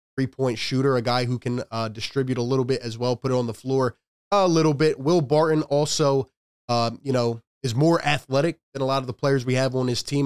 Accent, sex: American, male